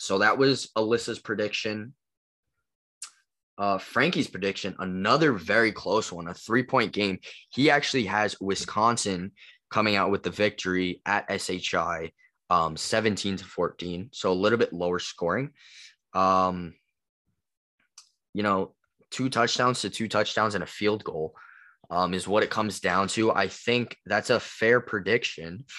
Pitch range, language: 90-115 Hz, English